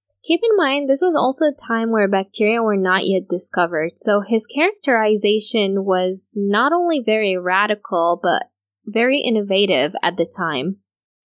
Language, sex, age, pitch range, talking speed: English, female, 10-29, 195-255 Hz, 150 wpm